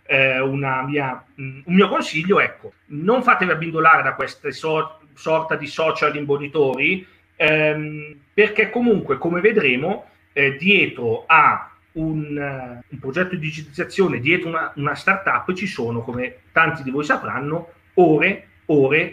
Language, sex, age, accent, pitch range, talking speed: Italian, male, 40-59, native, 140-195 Hz, 130 wpm